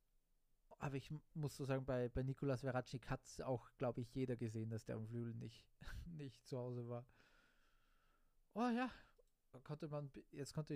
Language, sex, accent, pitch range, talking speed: German, male, German, 115-140 Hz, 165 wpm